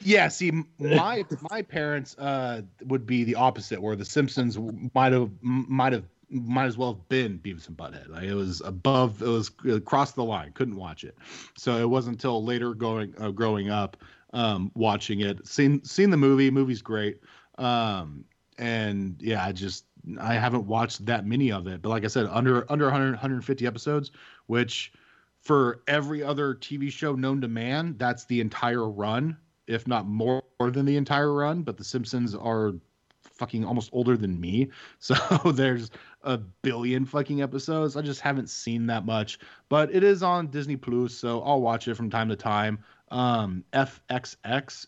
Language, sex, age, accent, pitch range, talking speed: English, male, 30-49, American, 105-135 Hz, 180 wpm